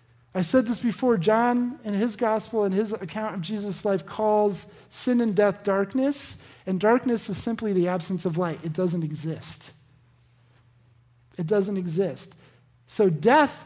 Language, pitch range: English, 160-225 Hz